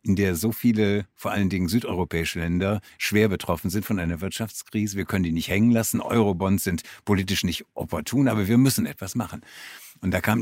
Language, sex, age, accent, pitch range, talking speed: German, male, 60-79, German, 90-115 Hz, 195 wpm